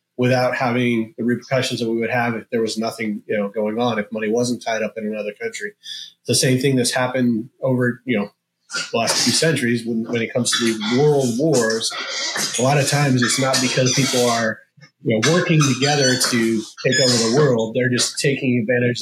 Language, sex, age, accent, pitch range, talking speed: English, male, 30-49, American, 110-130 Hz, 210 wpm